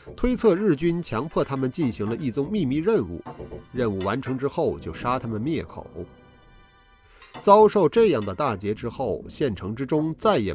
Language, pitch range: Chinese, 115-170 Hz